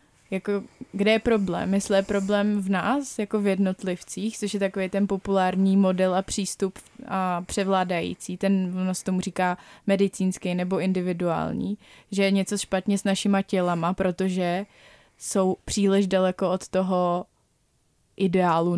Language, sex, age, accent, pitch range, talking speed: Czech, female, 20-39, native, 185-205 Hz, 135 wpm